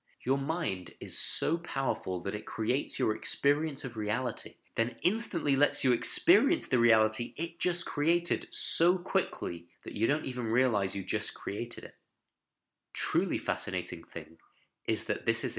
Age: 30-49